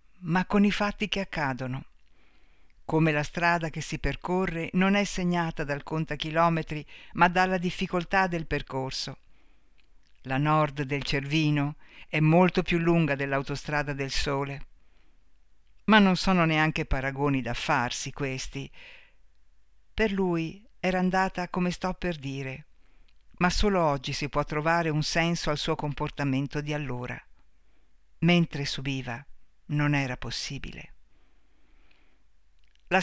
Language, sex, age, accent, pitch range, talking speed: Italian, female, 60-79, native, 140-180 Hz, 125 wpm